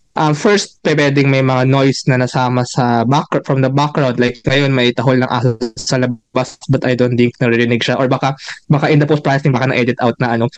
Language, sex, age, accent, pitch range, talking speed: English, male, 20-39, Filipino, 130-165 Hz, 205 wpm